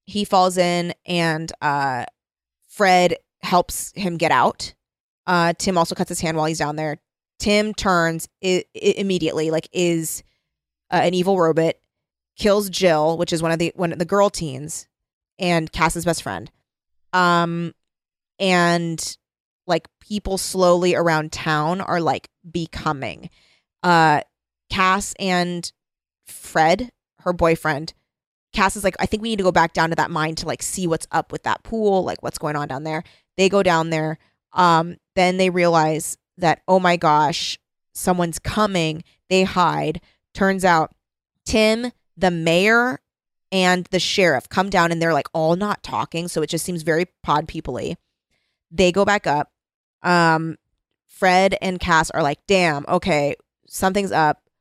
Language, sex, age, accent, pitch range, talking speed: English, female, 20-39, American, 160-185 Hz, 160 wpm